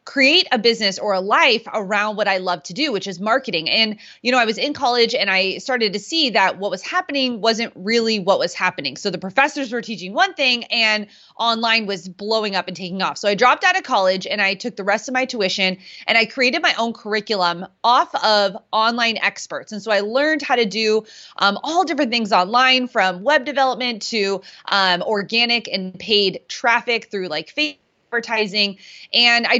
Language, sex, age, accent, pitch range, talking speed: English, female, 30-49, American, 195-240 Hz, 205 wpm